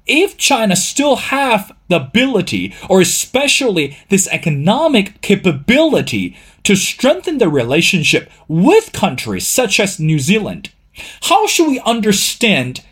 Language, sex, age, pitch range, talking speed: English, male, 30-49, 165-225 Hz, 115 wpm